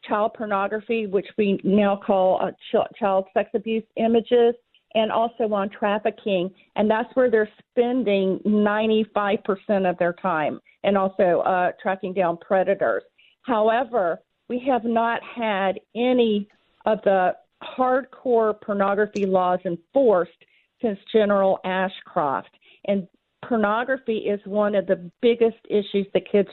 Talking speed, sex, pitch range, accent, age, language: 125 wpm, female, 195-235 Hz, American, 50-69, English